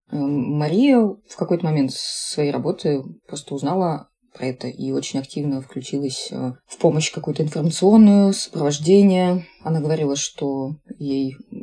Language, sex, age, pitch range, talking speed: Russian, female, 20-39, 140-175 Hz, 120 wpm